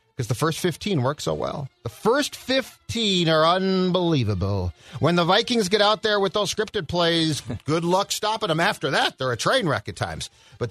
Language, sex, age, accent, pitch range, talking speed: English, male, 40-59, American, 110-160 Hz, 195 wpm